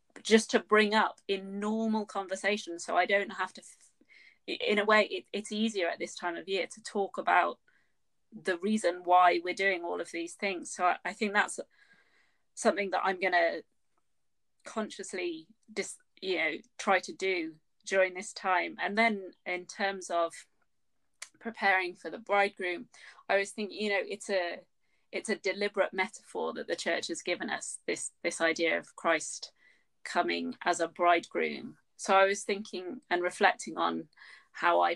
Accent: British